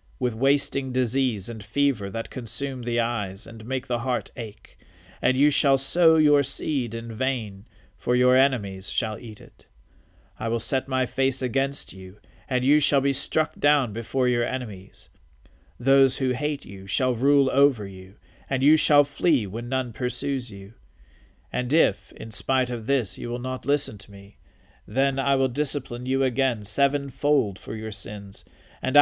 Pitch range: 105-135 Hz